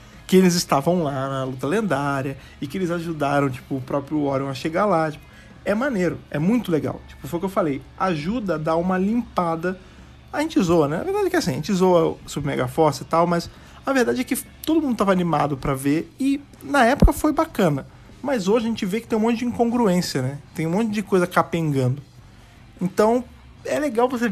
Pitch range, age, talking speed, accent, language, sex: 145-205 Hz, 50-69, 220 wpm, Brazilian, Portuguese, male